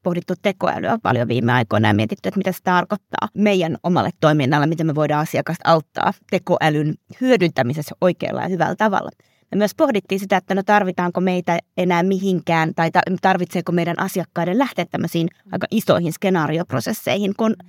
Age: 20-39